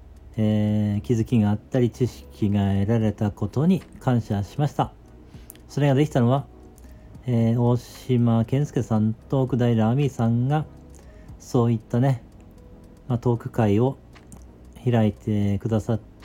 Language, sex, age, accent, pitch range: Japanese, male, 40-59, native, 90-120 Hz